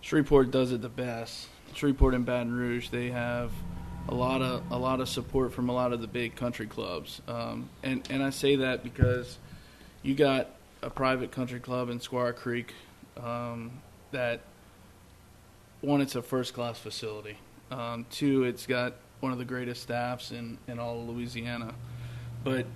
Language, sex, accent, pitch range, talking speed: English, male, American, 120-130 Hz, 160 wpm